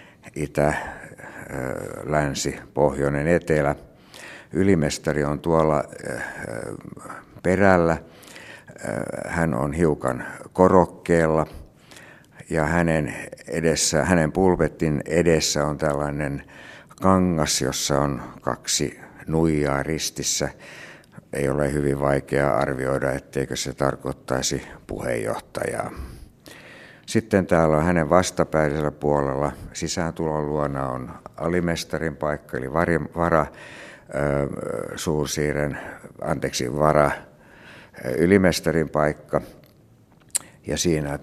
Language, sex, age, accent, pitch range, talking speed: Finnish, male, 60-79, native, 70-80 Hz, 75 wpm